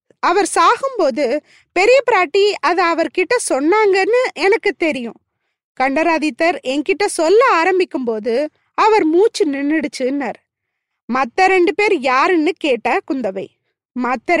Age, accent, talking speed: 20-39, native, 100 wpm